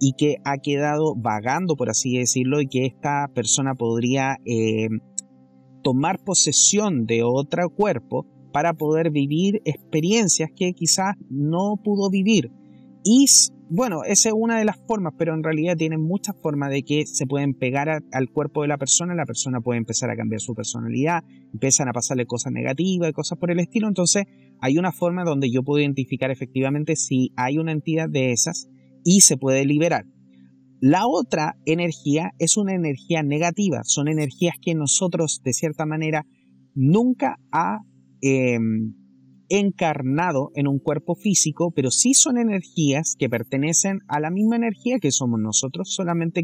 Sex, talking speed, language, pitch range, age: male, 160 wpm, Spanish, 130-175 Hz, 30-49